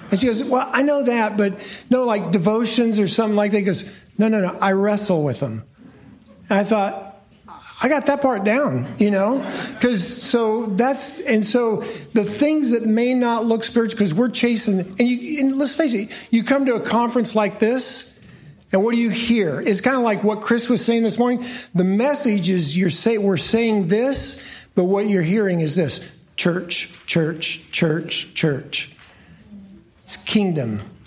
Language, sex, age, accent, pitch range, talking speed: English, male, 50-69, American, 175-230 Hz, 185 wpm